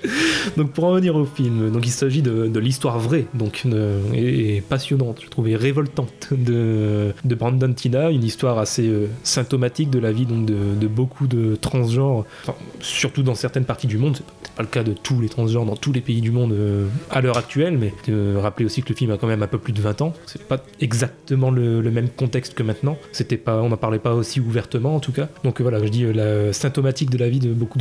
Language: French